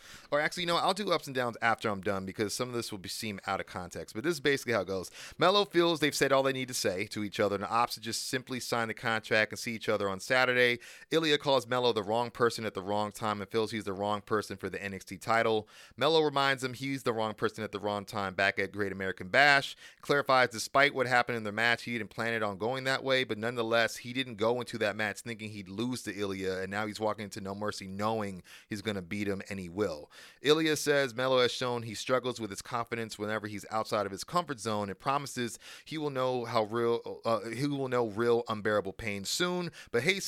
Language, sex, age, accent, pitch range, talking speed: English, male, 30-49, American, 105-130 Hz, 250 wpm